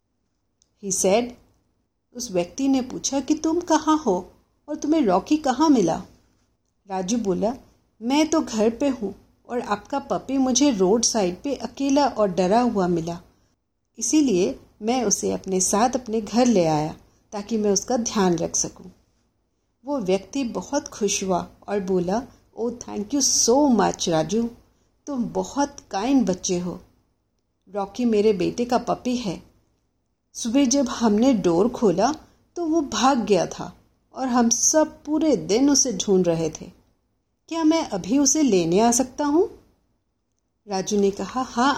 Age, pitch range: 50-69, 190-270 Hz